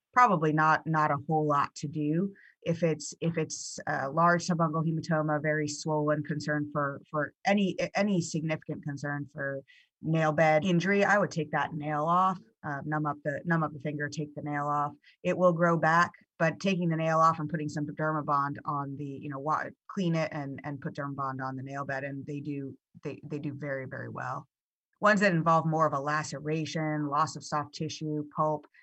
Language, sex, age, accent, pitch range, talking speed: English, female, 30-49, American, 145-165 Hz, 205 wpm